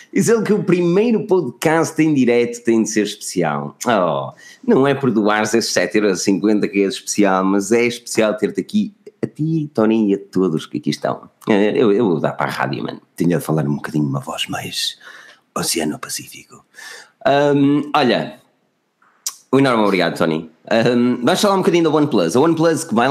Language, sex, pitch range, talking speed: Portuguese, male, 100-145 Hz, 185 wpm